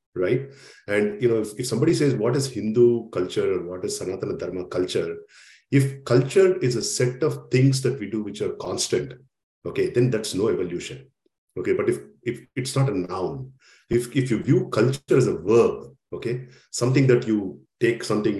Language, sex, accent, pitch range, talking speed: English, male, Indian, 110-140 Hz, 190 wpm